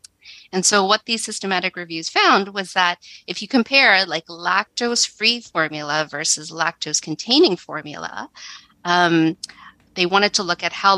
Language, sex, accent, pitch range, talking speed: English, female, American, 160-200 Hz, 135 wpm